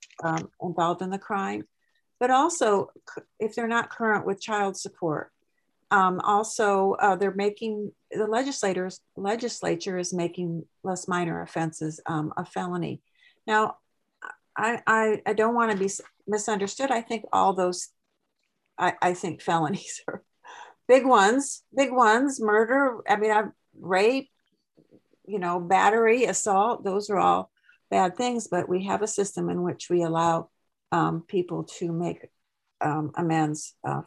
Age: 50-69